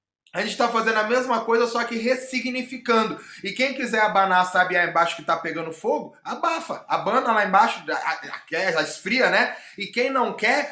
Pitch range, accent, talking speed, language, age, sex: 170-235 Hz, Brazilian, 180 wpm, Portuguese, 20-39, male